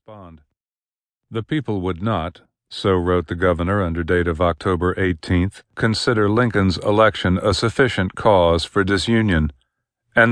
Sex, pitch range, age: male, 90-105 Hz, 50-69